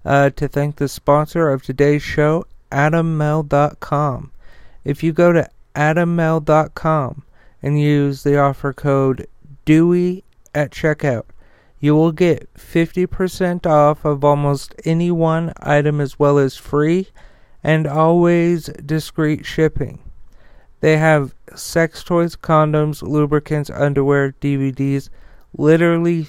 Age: 40-59